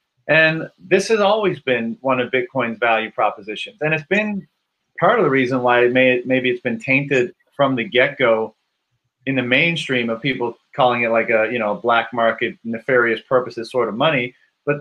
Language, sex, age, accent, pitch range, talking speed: English, male, 30-49, American, 125-150 Hz, 185 wpm